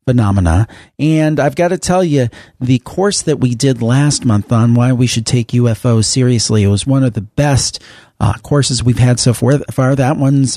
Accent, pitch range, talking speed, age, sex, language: American, 115-145 Hz, 200 wpm, 40-59, male, English